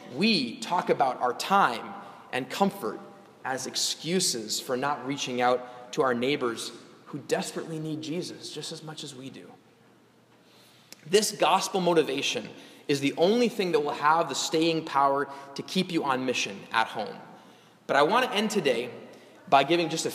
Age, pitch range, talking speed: 20-39, 145-200 Hz, 165 wpm